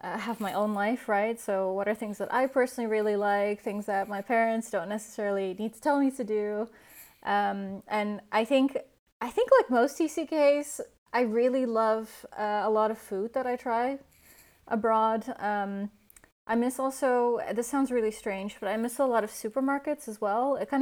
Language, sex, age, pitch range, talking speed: English, female, 20-39, 205-255 Hz, 195 wpm